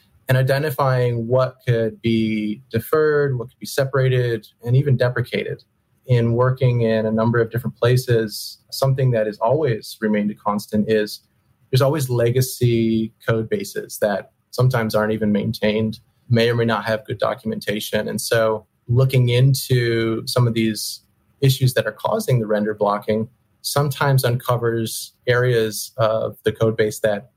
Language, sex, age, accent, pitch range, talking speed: English, male, 30-49, American, 110-125 Hz, 150 wpm